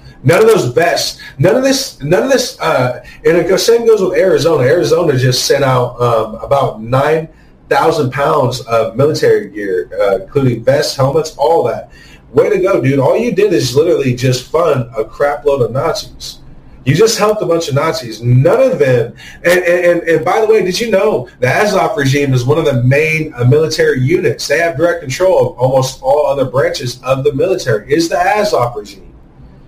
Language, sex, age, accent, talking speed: English, male, 30-49, American, 195 wpm